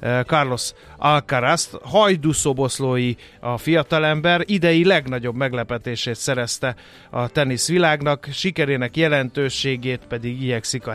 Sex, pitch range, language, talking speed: male, 120-160 Hz, Hungarian, 90 wpm